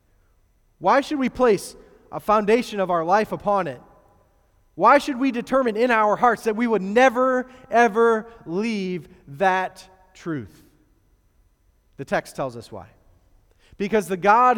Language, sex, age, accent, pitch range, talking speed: English, male, 30-49, American, 150-215 Hz, 140 wpm